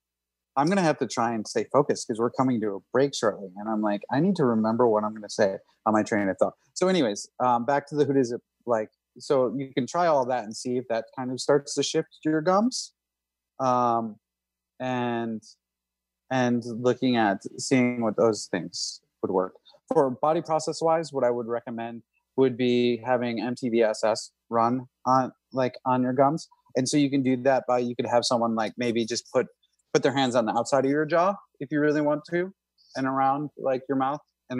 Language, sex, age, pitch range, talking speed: English, male, 30-49, 105-135 Hz, 215 wpm